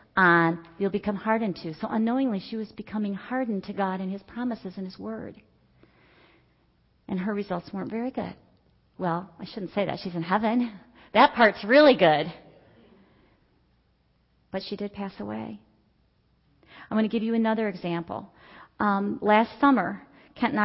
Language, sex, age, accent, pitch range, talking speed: English, female, 40-59, American, 180-225 Hz, 155 wpm